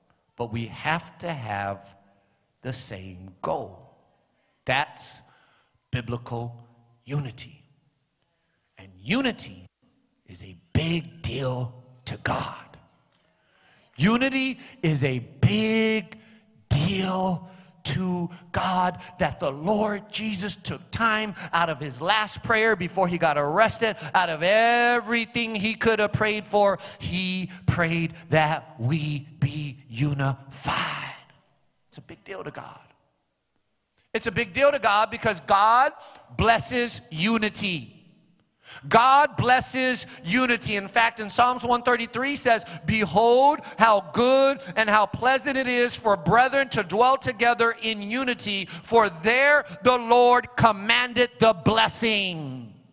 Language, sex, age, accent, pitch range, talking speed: English, male, 50-69, American, 145-225 Hz, 115 wpm